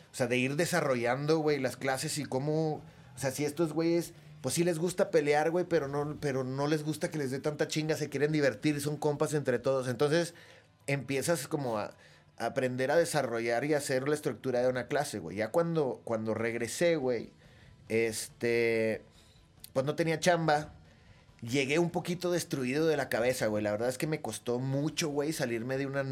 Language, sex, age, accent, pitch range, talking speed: Spanish, male, 30-49, Mexican, 125-160 Hz, 195 wpm